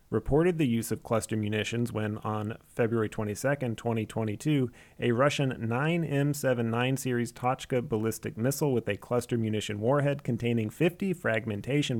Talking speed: 130 wpm